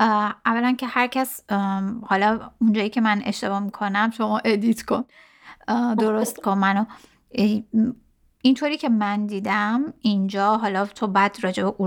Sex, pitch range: female, 205-250 Hz